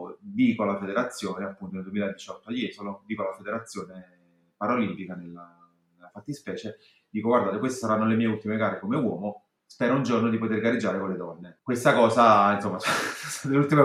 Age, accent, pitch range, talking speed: 30-49, native, 95-120 Hz, 180 wpm